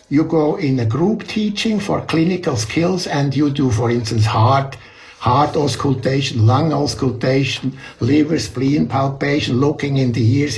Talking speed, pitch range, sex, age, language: 145 wpm, 125-185 Hz, male, 60-79, Ukrainian